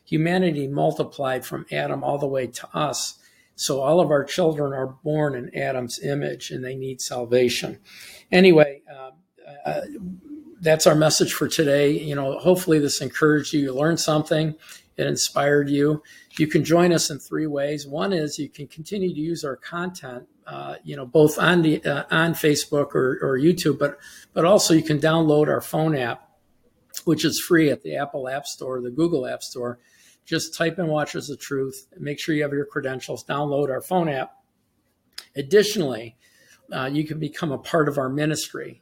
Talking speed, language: 180 wpm, English